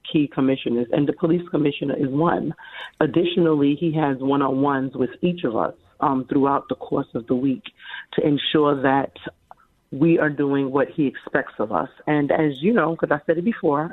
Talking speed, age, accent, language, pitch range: 185 wpm, 40-59, American, English, 135-170 Hz